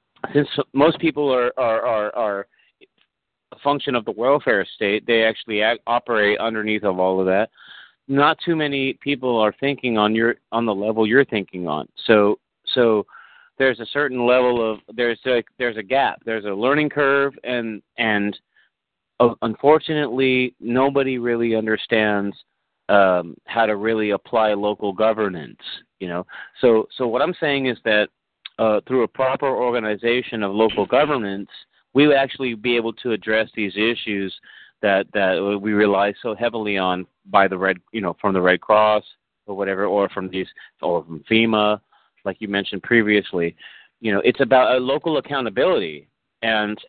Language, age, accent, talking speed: English, 40-59, American, 165 wpm